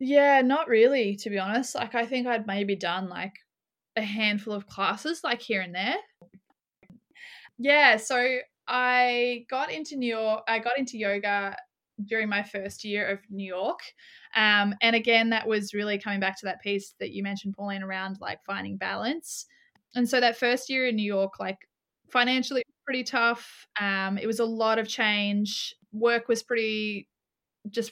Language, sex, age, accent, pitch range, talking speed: English, female, 20-39, Australian, 200-240 Hz, 175 wpm